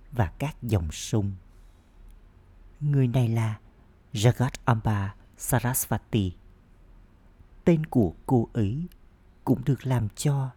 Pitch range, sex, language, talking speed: 95-120 Hz, male, Vietnamese, 95 wpm